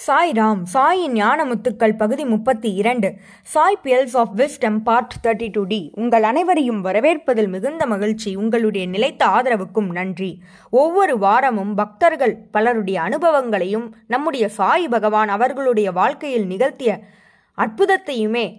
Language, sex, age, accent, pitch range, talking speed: Tamil, female, 20-39, native, 210-275 Hz, 110 wpm